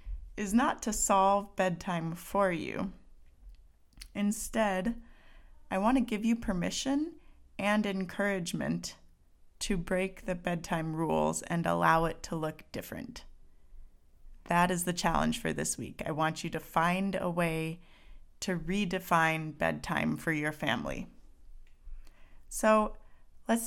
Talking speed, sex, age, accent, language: 125 wpm, female, 30-49, American, English